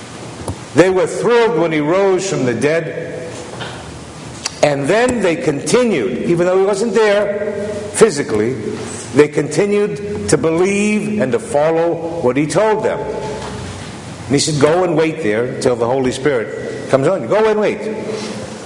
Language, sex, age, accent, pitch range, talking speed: English, male, 50-69, American, 155-210 Hz, 150 wpm